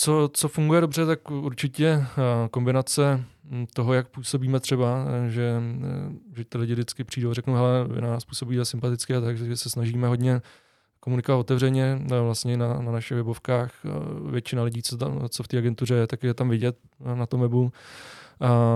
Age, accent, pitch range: 20-39, native, 120-130 Hz